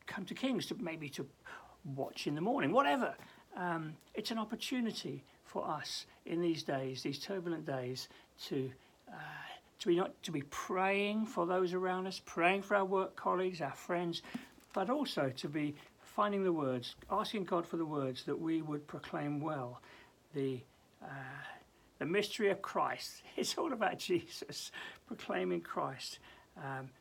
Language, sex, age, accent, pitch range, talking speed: English, male, 60-79, British, 145-195 Hz, 160 wpm